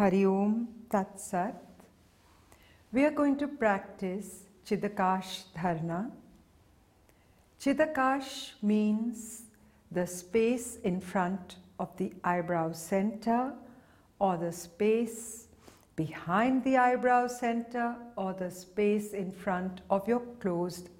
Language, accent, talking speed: English, Indian, 90 wpm